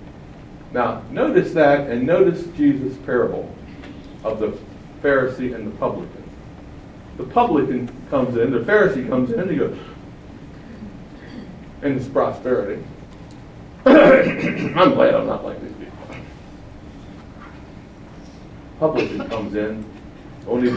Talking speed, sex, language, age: 110 wpm, male, English, 60-79